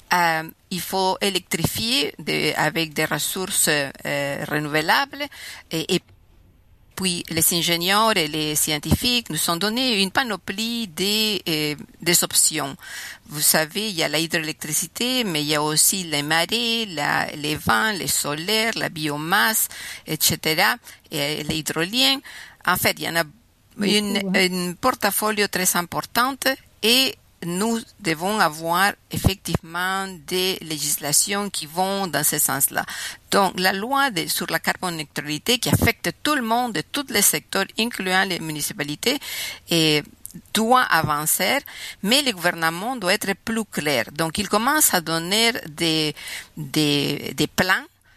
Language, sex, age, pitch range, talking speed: French, female, 50-69, 155-210 Hz, 135 wpm